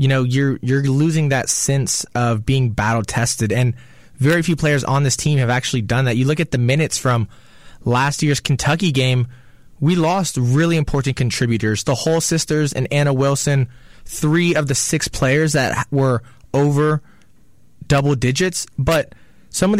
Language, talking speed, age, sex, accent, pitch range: English, 170 wpm, 20-39, male, American, 125-155 Hz